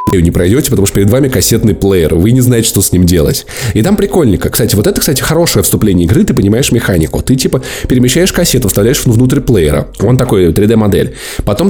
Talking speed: 200 wpm